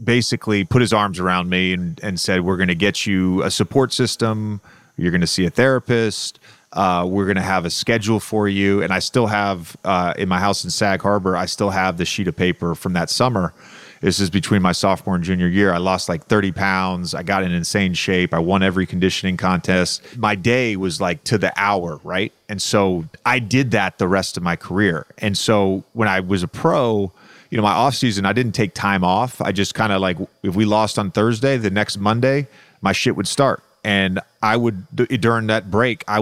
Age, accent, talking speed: 30-49, American, 225 wpm